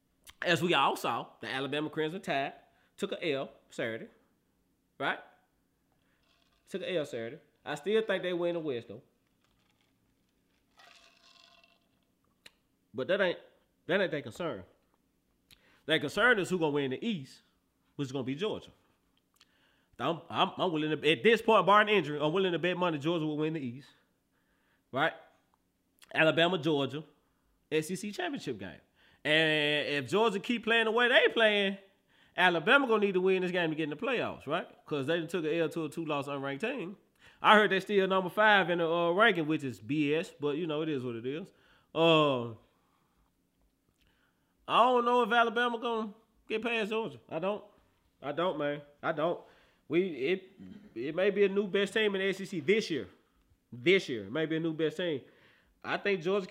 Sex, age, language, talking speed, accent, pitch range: male, 30-49, English, 180 wpm, American, 145-200 Hz